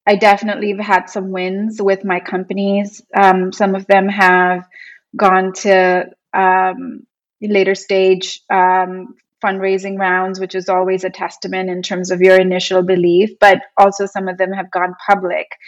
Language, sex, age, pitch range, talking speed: English, female, 20-39, 185-200 Hz, 155 wpm